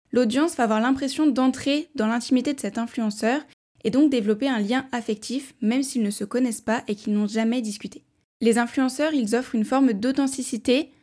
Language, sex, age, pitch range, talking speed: French, female, 10-29, 220-260 Hz, 185 wpm